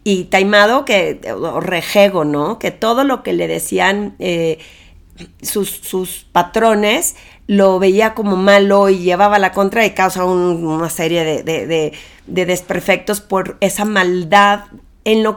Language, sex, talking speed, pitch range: Spanish, female, 150 wpm, 180-220 Hz